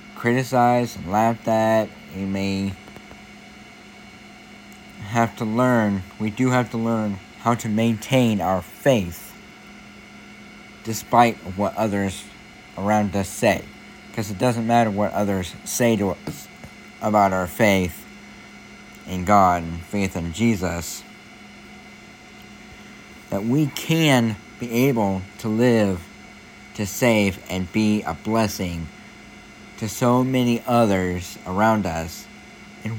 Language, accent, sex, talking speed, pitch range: English, American, male, 115 wpm, 95-120 Hz